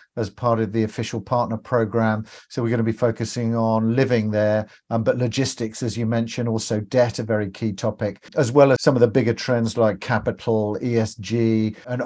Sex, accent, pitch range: male, British, 115-135 Hz